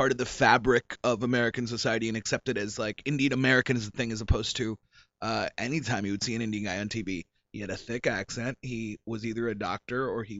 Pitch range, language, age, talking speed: 115-145 Hz, English, 30-49, 230 wpm